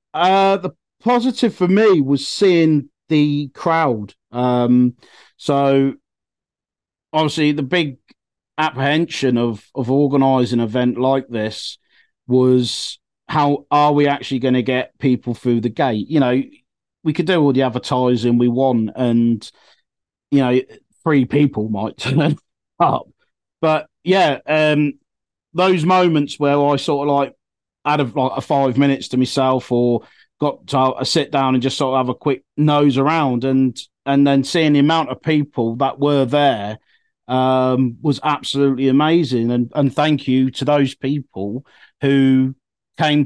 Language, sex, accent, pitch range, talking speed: English, male, British, 130-150 Hz, 150 wpm